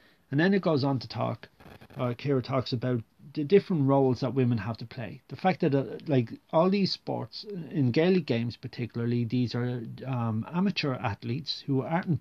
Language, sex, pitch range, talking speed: English, male, 120-150 Hz, 185 wpm